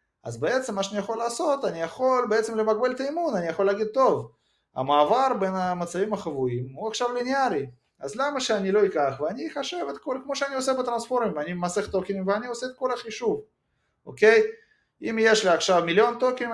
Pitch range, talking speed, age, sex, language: 140-235 Hz, 180 wpm, 30-49, male, Hebrew